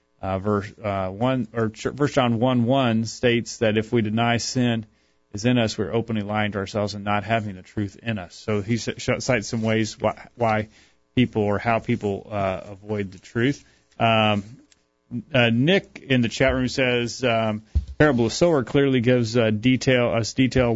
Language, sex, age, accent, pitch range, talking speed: English, male, 30-49, American, 105-125 Hz, 185 wpm